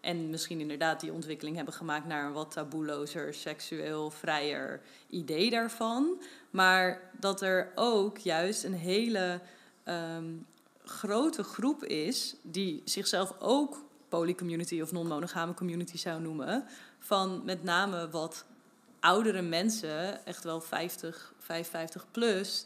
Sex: female